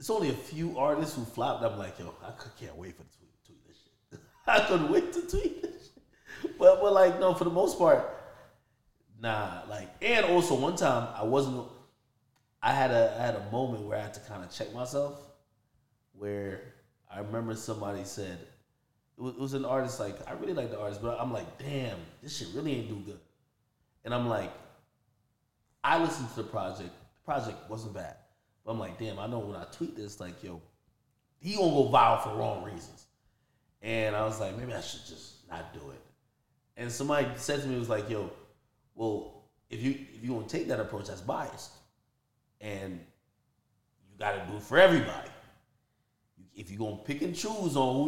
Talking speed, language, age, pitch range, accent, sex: 200 wpm, English, 30-49, 105-135 Hz, American, male